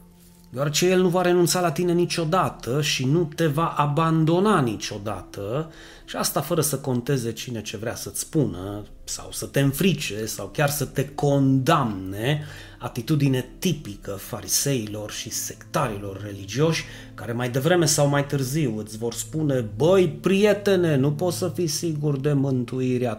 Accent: native